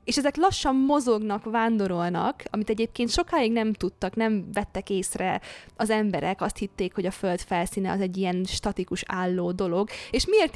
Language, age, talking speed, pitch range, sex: Hungarian, 20-39, 165 wpm, 190-225 Hz, female